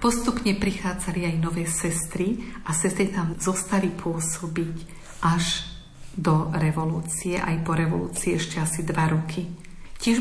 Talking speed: 125 wpm